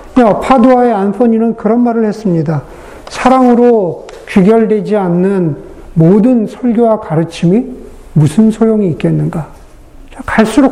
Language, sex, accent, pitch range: Korean, male, native, 195-265 Hz